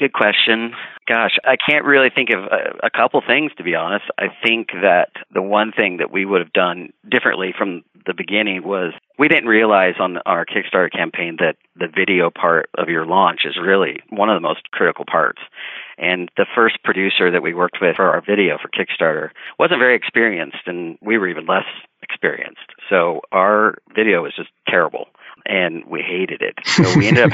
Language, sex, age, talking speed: English, male, 40-59, 195 wpm